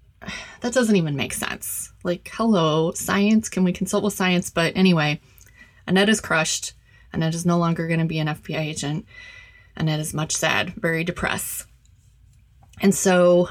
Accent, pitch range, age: American, 160-195 Hz, 30-49